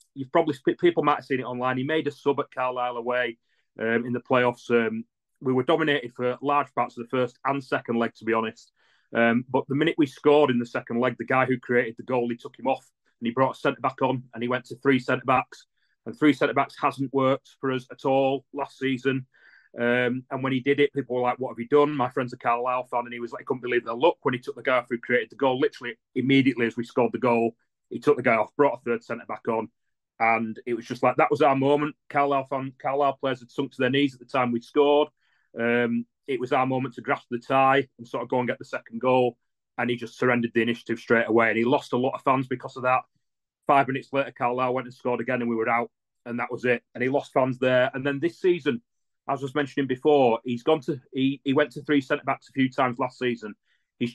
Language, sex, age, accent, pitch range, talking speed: English, male, 30-49, British, 120-140 Hz, 265 wpm